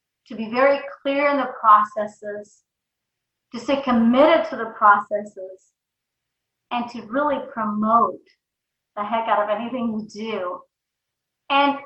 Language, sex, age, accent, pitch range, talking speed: English, female, 30-49, American, 210-275 Hz, 125 wpm